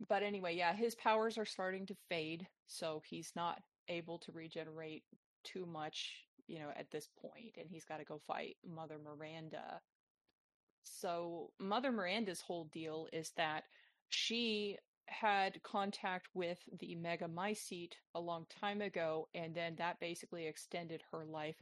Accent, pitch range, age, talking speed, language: American, 160-190 Hz, 30-49, 150 wpm, English